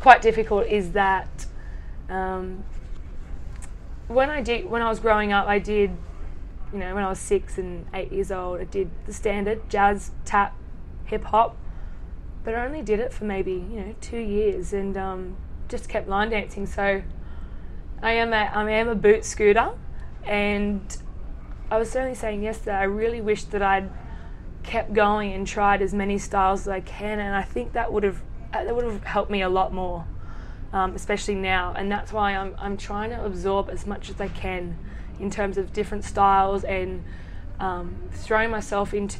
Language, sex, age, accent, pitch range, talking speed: English, female, 20-39, Australian, 190-210 Hz, 185 wpm